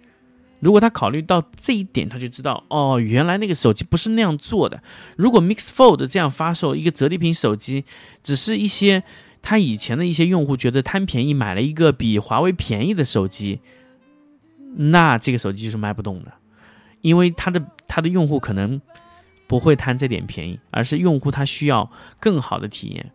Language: Chinese